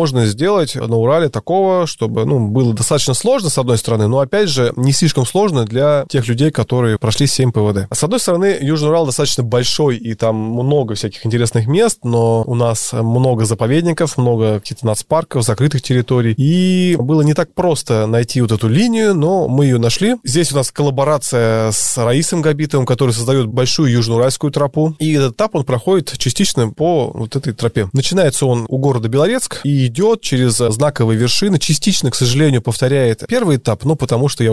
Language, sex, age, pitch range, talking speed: Russian, male, 20-39, 115-155 Hz, 185 wpm